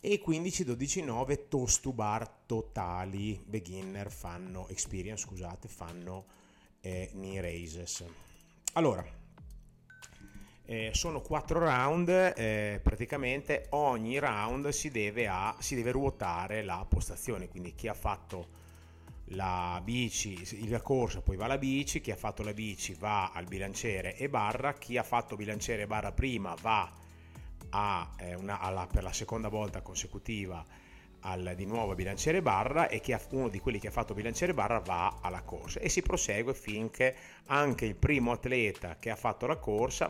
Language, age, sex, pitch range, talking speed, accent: Italian, 30-49, male, 95-120 Hz, 155 wpm, native